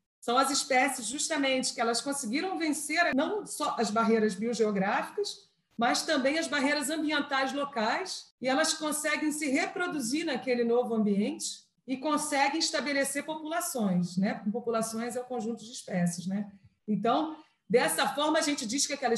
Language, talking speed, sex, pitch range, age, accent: Portuguese, 155 wpm, female, 215-290 Hz, 40-59, Brazilian